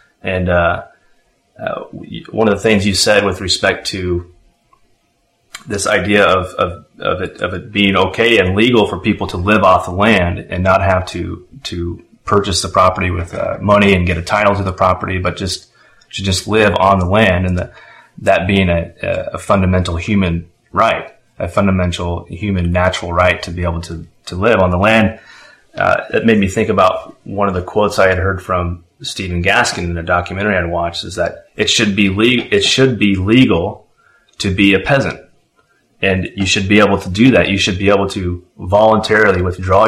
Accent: American